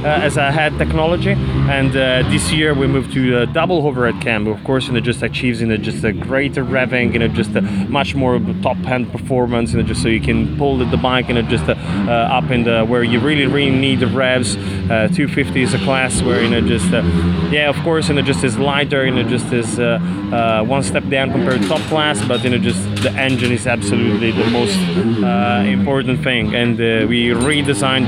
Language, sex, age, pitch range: Swedish, male, 20-39, 110-135 Hz